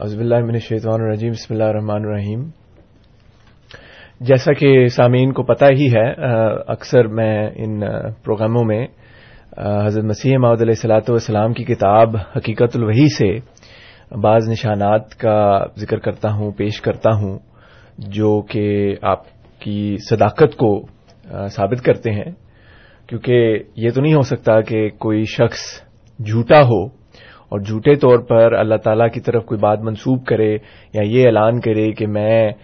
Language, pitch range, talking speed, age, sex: Urdu, 105-120 Hz, 145 wpm, 30-49, male